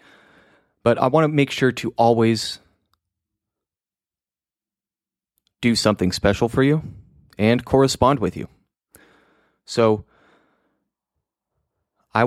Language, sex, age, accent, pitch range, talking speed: English, male, 20-39, American, 95-115 Hz, 95 wpm